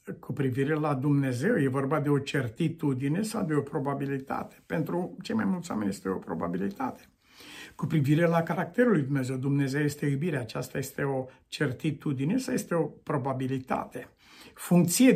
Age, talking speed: 60-79, 155 wpm